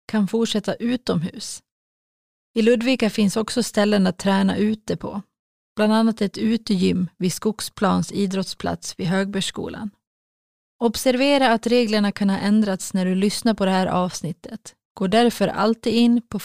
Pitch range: 190-225 Hz